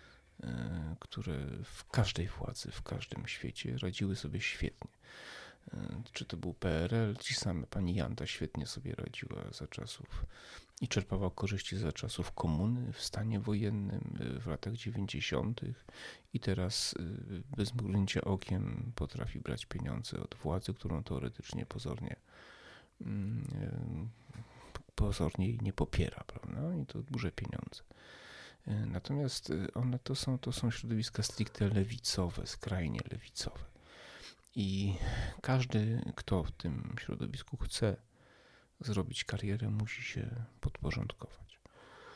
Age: 40-59